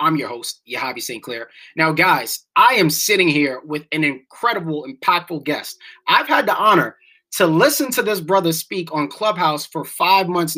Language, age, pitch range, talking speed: English, 20-39, 155-200 Hz, 180 wpm